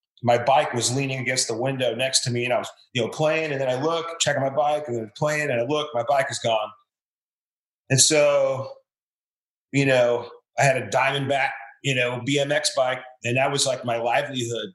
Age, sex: 30-49, male